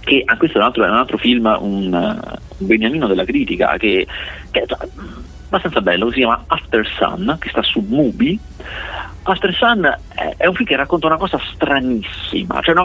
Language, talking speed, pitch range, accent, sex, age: Italian, 190 wpm, 105-150 Hz, native, male, 40-59